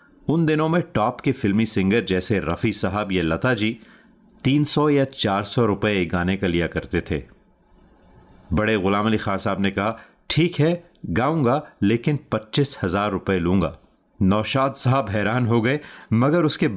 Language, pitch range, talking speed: Hindi, 95-135 Hz, 165 wpm